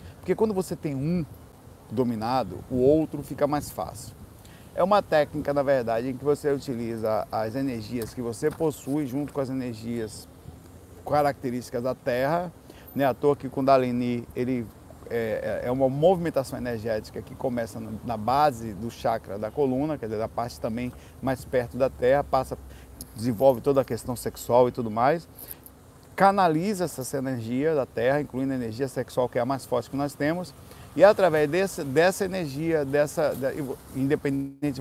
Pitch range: 120-150 Hz